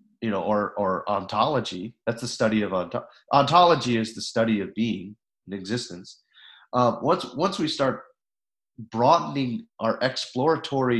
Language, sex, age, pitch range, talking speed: English, male, 40-59, 110-125 Hz, 130 wpm